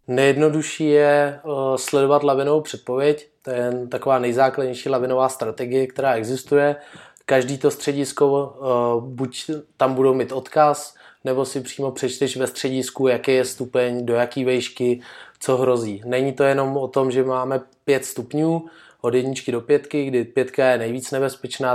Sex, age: male, 20-39